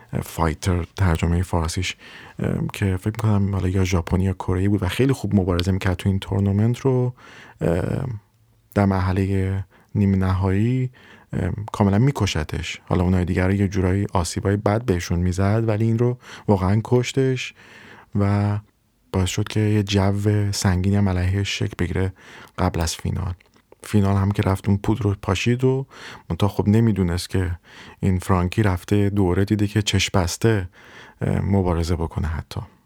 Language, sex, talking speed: Persian, male, 135 wpm